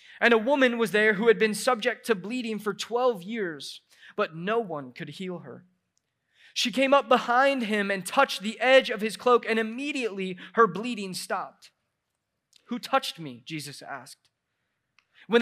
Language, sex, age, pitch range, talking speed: English, male, 20-39, 195-250 Hz, 165 wpm